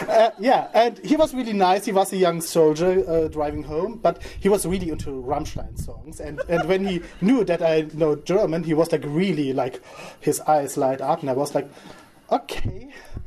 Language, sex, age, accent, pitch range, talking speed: English, male, 30-49, German, 145-200 Hz, 205 wpm